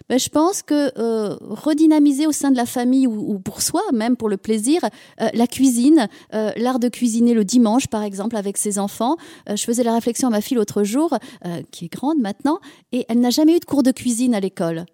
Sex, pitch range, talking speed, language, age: female, 205-265 Hz, 235 wpm, French, 30-49